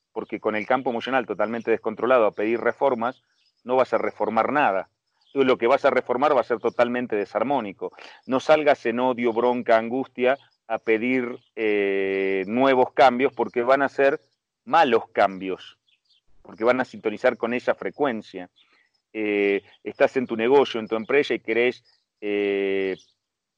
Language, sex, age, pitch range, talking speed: Spanish, male, 40-59, 110-125 Hz, 155 wpm